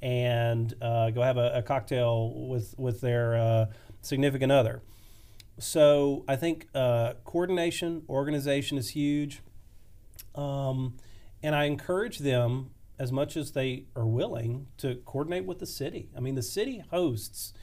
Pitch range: 115-145 Hz